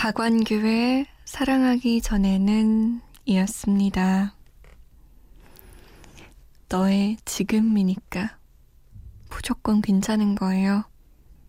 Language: Korean